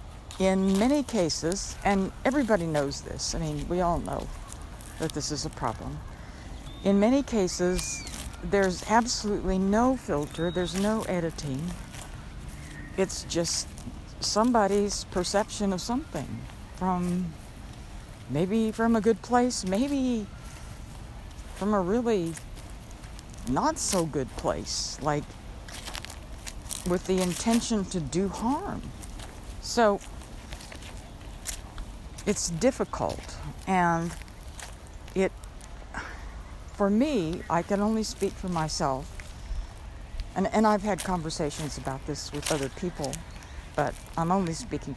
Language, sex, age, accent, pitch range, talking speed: English, female, 60-79, American, 135-210 Hz, 110 wpm